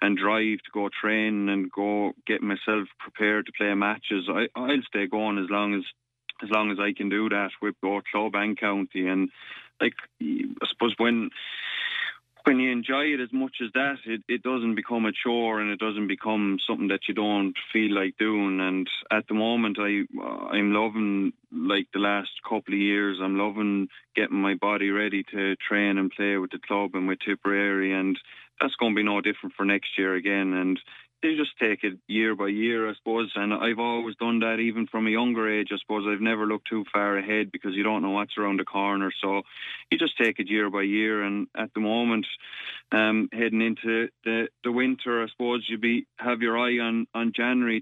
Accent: Irish